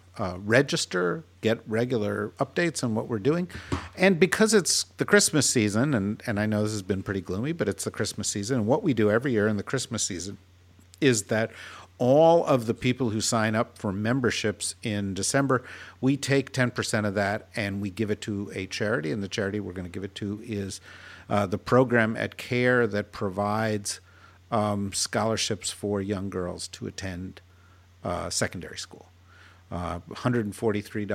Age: 50-69